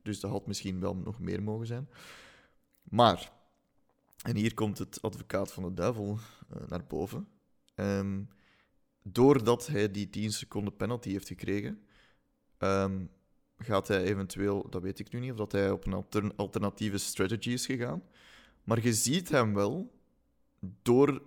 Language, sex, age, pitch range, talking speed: Dutch, male, 20-39, 100-125 Hz, 155 wpm